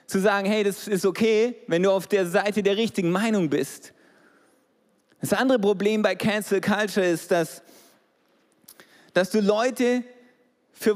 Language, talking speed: German, 150 wpm